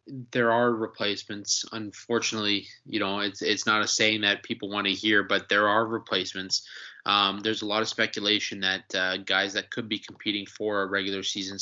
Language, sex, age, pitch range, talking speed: English, male, 20-39, 100-115 Hz, 190 wpm